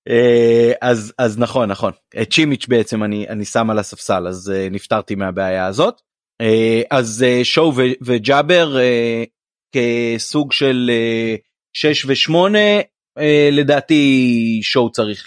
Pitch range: 115-135 Hz